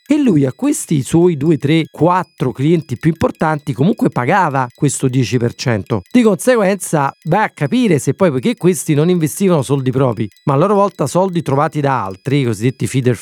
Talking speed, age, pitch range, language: 175 wpm, 40-59, 130-185 Hz, Italian